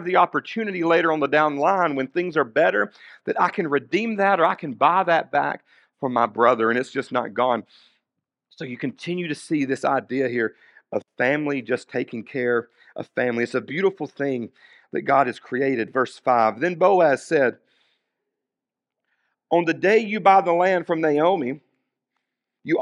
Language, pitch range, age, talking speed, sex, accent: English, 130-170 Hz, 50-69, 180 wpm, male, American